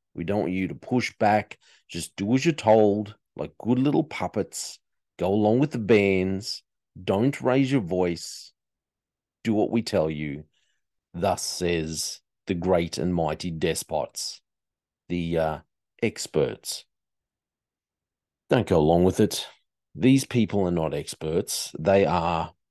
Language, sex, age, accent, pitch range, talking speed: English, male, 40-59, Australian, 85-110 Hz, 135 wpm